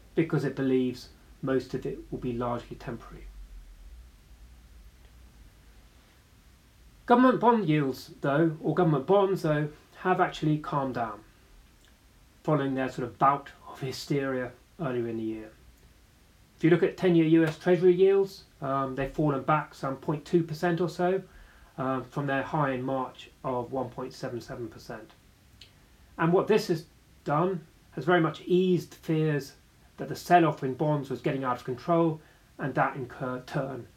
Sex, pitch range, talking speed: male, 125-170 Hz, 145 wpm